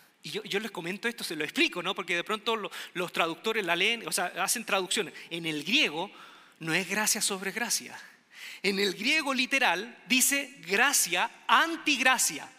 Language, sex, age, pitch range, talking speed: Spanish, male, 30-49, 205-295 Hz, 175 wpm